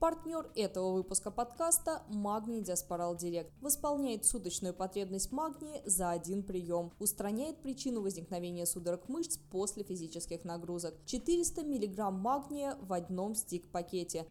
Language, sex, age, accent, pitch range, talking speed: Russian, female, 20-39, native, 175-245 Hz, 115 wpm